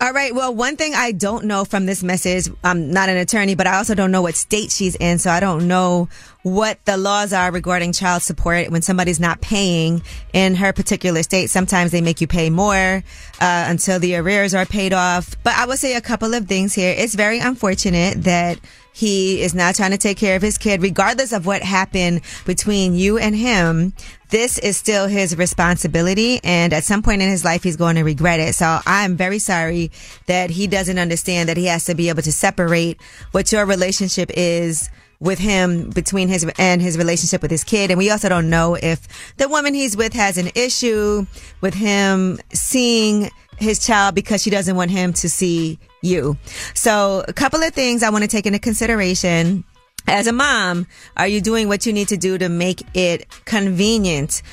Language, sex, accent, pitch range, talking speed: English, female, American, 175-205 Hz, 205 wpm